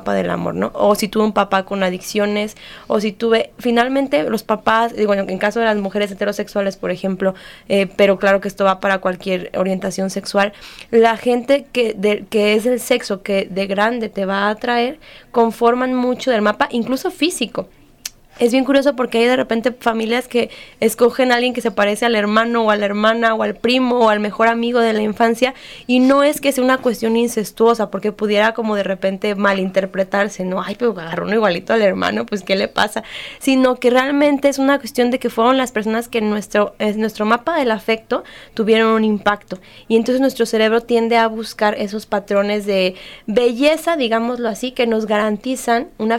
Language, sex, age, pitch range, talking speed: Spanish, female, 10-29, 200-245 Hz, 200 wpm